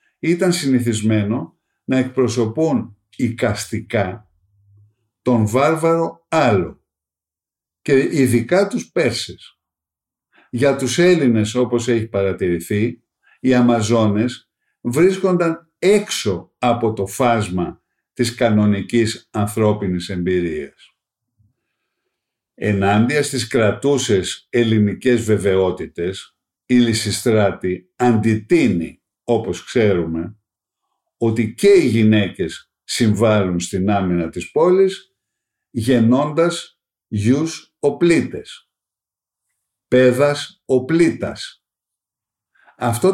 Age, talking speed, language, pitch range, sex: 50-69, 75 wpm, Greek, 105-130 Hz, male